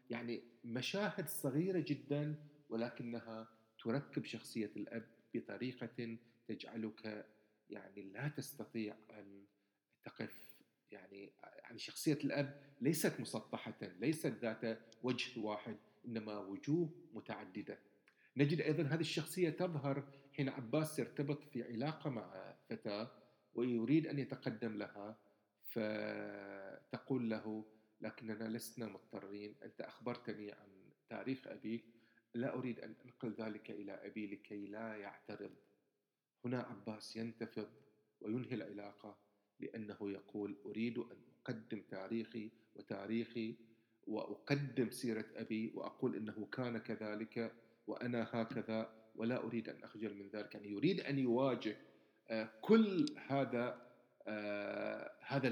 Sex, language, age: male, Arabic, 40-59